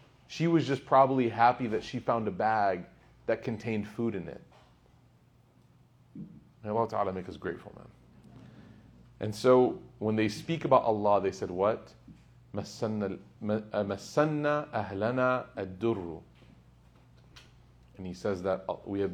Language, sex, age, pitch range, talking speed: English, male, 30-49, 100-125 Hz, 120 wpm